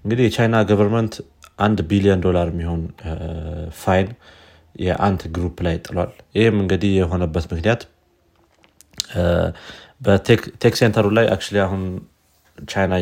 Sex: male